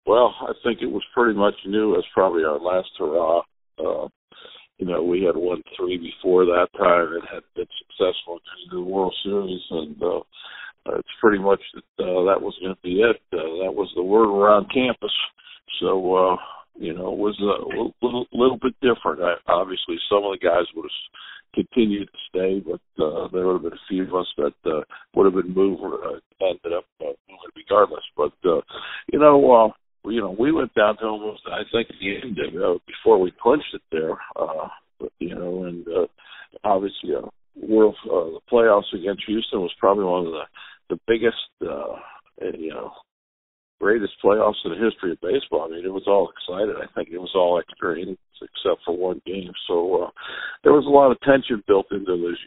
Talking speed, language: 205 wpm, English